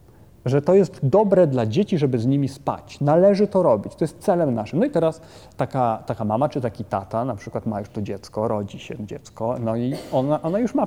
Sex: male